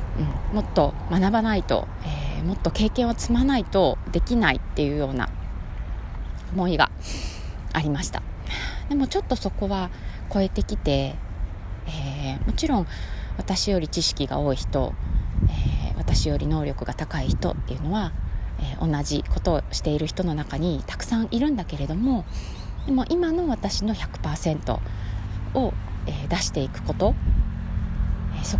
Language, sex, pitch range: Japanese, female, 85-110 Hz